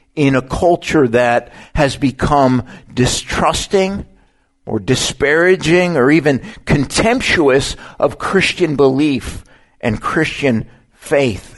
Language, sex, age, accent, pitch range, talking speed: English, male, 50-69, American, 110-160 Hz, 95 wpm